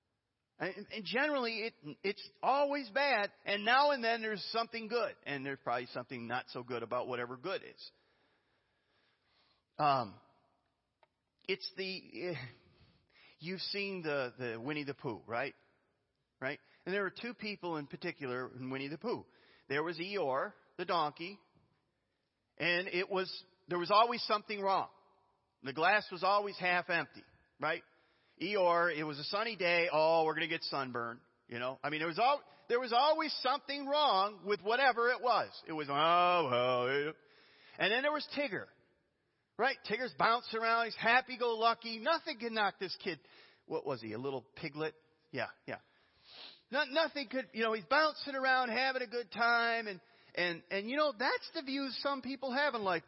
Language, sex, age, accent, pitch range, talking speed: English, male, 40-59, American, 150-240 Hz, 165 wpm